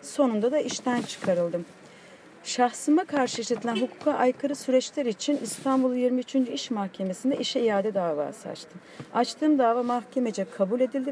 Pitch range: 200-265 Hz